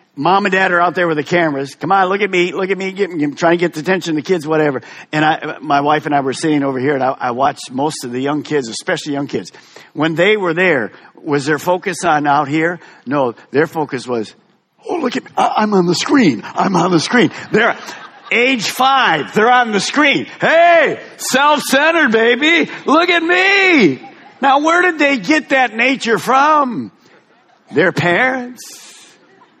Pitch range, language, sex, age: 150-235 Hz, English, male, 50-69